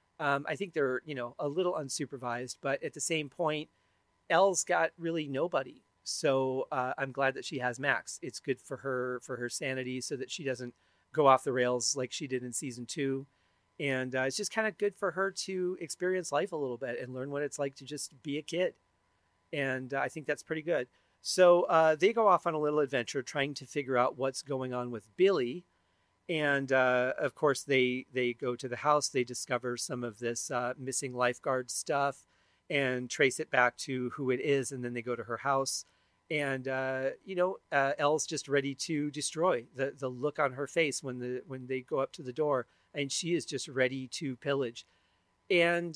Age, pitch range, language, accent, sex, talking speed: 40-59, 125-160 Hz, English, American, male, 215 wpm